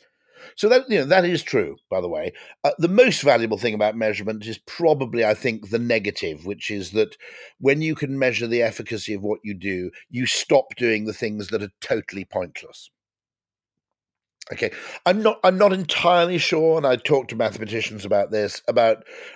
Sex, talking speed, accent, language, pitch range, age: male, 185 wpm, British, English, 105-145 Hz, 50-69